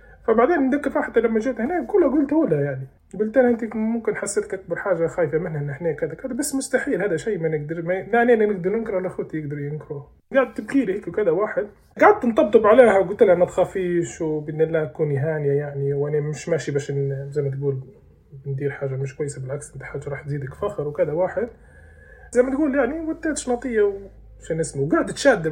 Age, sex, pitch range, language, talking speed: 20-39, male, 140-200 Hz, Arabic, 195 wpm